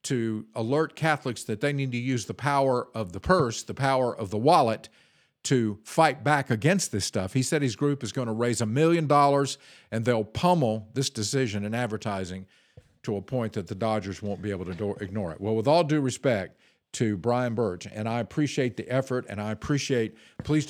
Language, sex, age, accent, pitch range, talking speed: English, male, 50-69, American, 105-140 Hz, 205 wpm